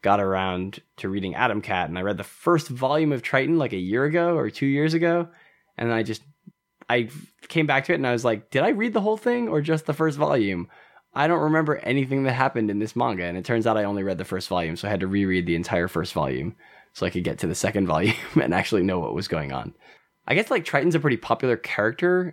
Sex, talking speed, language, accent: male, 255 wpm, English, American